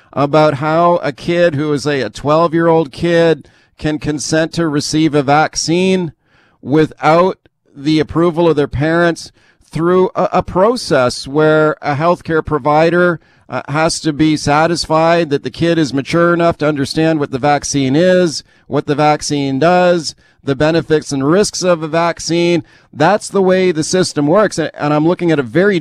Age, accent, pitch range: 40-59, American, 140-170 Hz